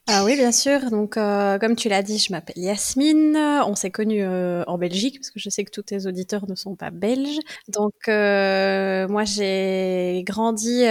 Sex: female